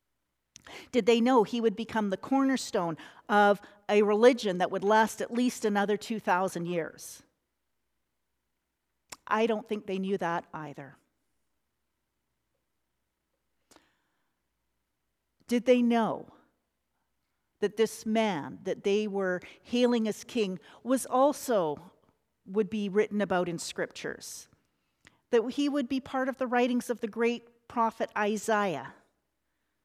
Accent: American